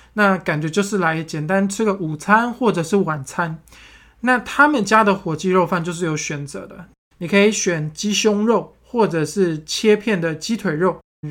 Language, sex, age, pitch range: Chinese, male, 20-39, 170-220 Hz